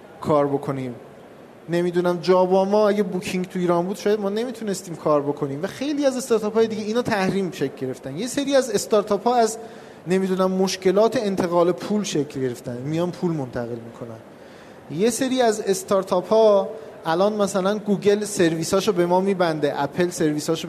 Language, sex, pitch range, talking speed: Persian, male, 160-215 Hz, 155 wpm